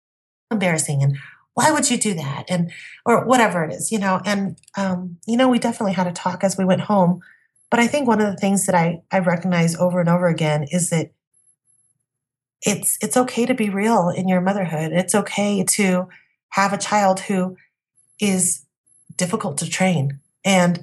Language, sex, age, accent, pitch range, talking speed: English, female, 30-49, American, 175-210 Hz, 185 wpm